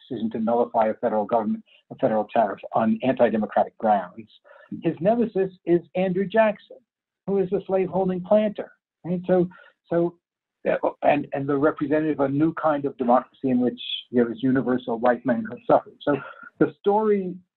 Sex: male